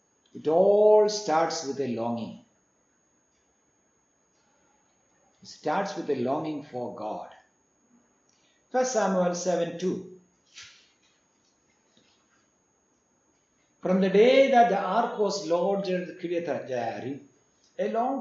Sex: male